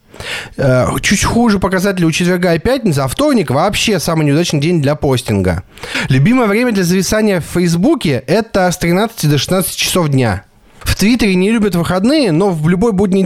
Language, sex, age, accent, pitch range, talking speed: Russian, male, 20-39, native, 135-195 Hz, 170 wpm